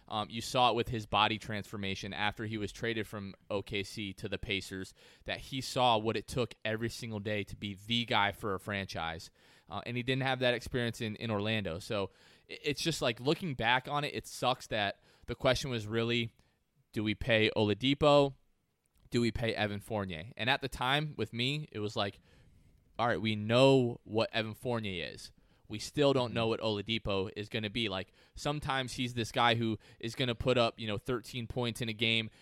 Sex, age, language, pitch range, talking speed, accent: male, 20-39, English, 105-130 Hz, 205 wpm, American